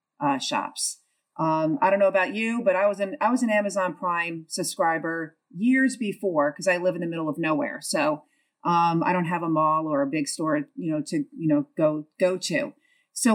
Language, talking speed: English, 215 wpm